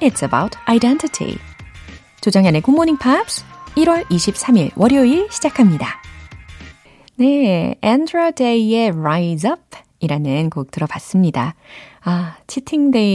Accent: native